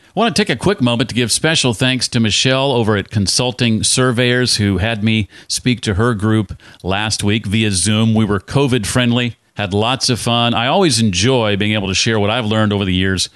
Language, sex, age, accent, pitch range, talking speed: English, male, 50-69, American, 100-130 Hz, 215 wpm